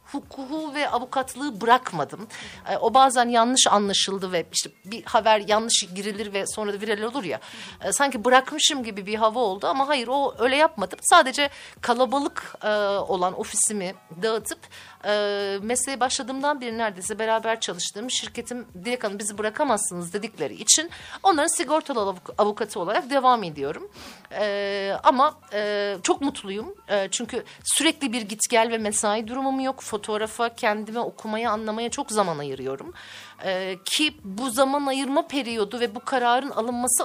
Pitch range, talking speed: 205-275 Hz, 140 wpm